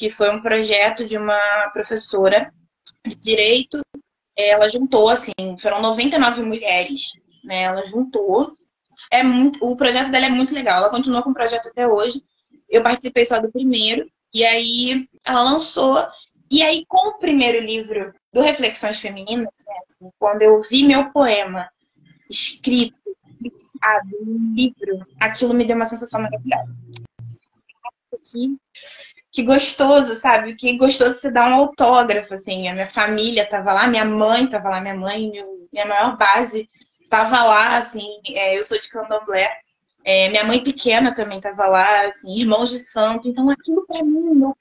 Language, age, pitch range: Portuguese, 20-39, 210-260 Hz